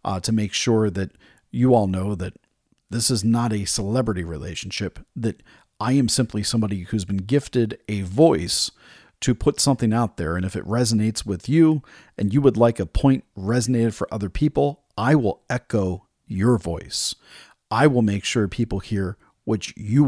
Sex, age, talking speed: male, 40-59, 175 wpm